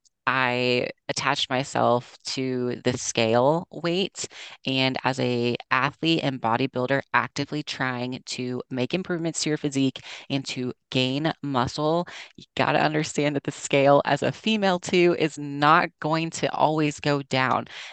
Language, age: English, 20-39